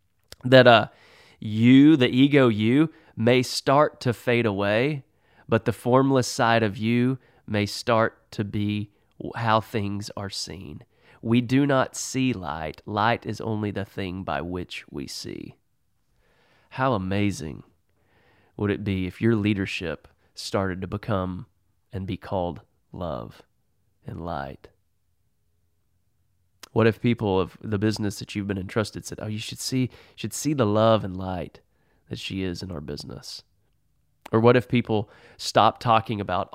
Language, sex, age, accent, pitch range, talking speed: English, male, 30-49, American, 95-125 Hz, 150 wpm